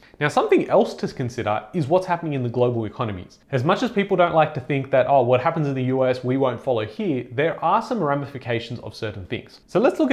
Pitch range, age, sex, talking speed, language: 125-170 Hz, 30-49, male, 245 wpm, English